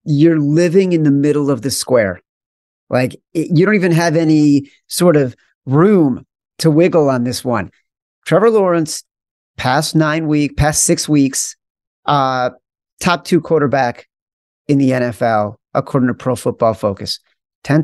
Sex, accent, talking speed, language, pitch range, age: male, American, 145 wpm, English, 125-155 Hz, 30-49